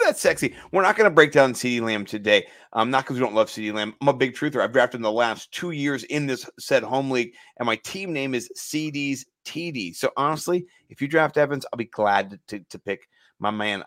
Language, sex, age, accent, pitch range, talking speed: English, male, 30-49, American, 110-145 Hz, 245 wpm